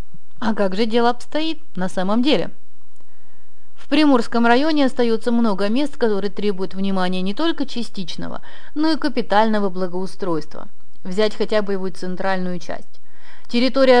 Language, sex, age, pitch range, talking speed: Russian, female, 30-49, 200-245 Hz, 135 wpm